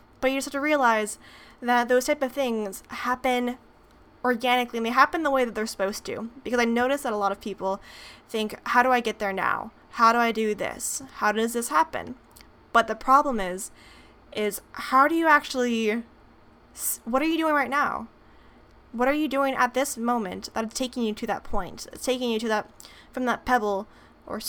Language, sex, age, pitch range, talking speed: English, female, 10-29, 220-260 Hz, 205 wpm